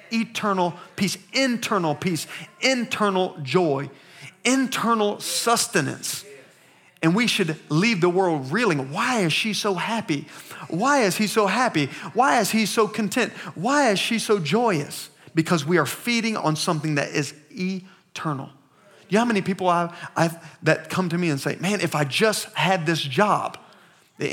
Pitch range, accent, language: 160-205 Hz, American, English